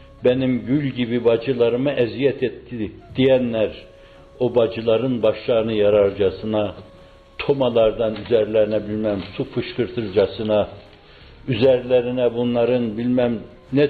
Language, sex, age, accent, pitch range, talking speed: Turkish, male, 60-79, native, 110-135 Hz, 85 wpm